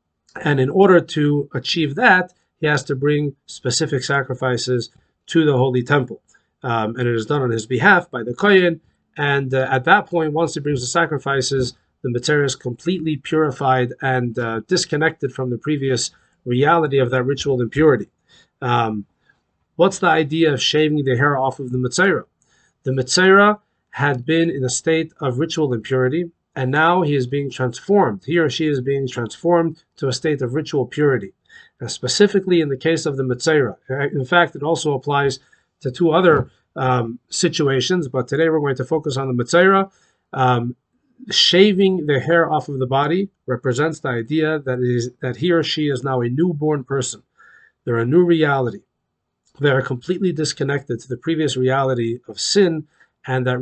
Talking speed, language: 175 wpm, English